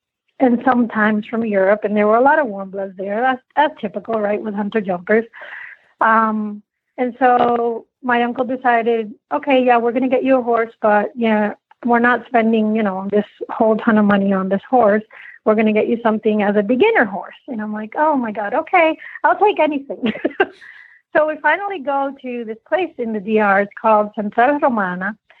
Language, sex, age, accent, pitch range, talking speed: English, female, 40-59, American, 210-255 Hz, 200 wpm